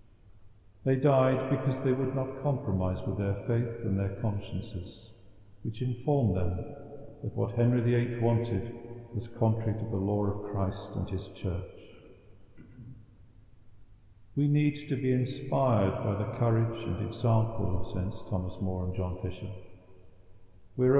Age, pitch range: 50-69, 100-125 Hz